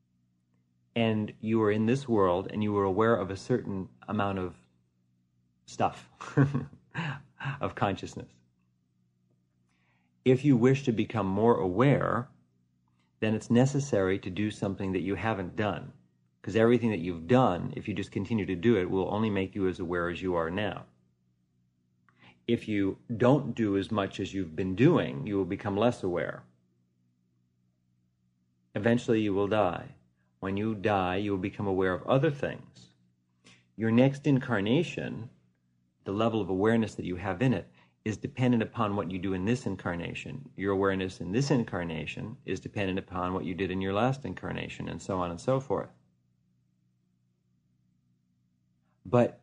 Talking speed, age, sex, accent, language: 155 wpm, 30-49, male, American, English